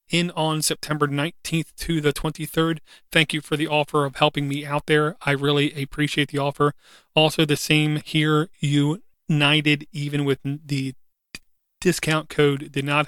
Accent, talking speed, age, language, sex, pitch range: American, 160 wpm, 30-49, English, male, 140-155 Hz